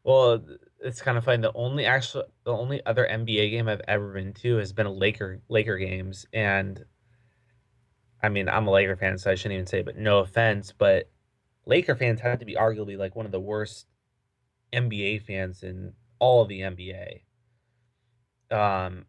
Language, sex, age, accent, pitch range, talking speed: English, male, 20-39, American, 100-120 Hz, 180 wpm